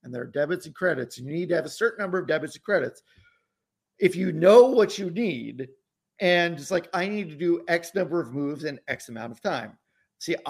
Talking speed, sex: 235 wpm, male